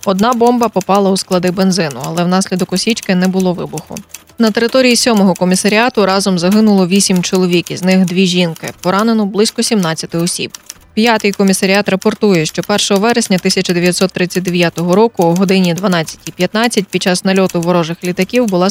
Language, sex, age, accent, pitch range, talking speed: Ukrainian, female, 20-39, native, 180-205 Hz, 140 wpm